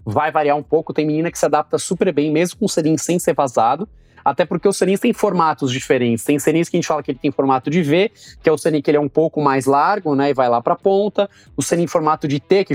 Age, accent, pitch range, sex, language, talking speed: 20-39, Brazilian, 135-180 Hz, male, Portuguese, 285 wpm